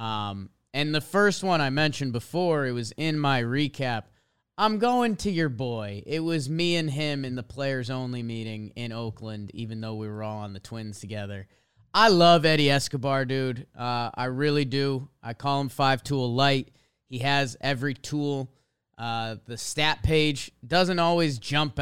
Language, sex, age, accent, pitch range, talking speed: English, male, 30-49, American, 125-165 Hz, 180 wpm